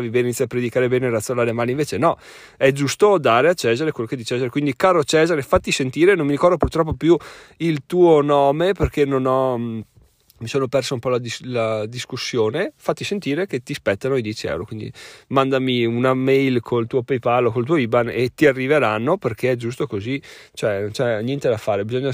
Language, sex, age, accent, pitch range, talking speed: Italian, male, 30-49, native, 115-140 Hz, 210 wpm